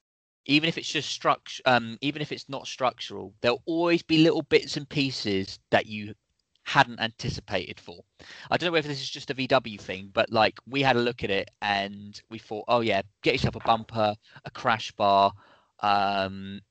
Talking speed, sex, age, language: 190 wpm, male, 20-39, English